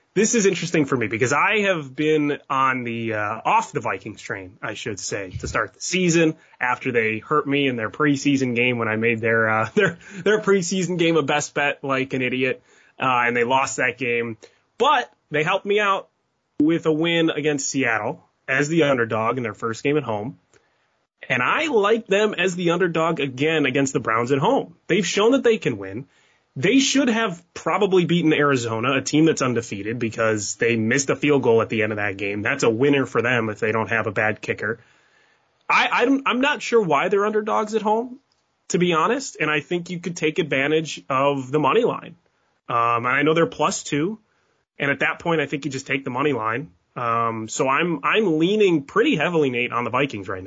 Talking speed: 215 wpm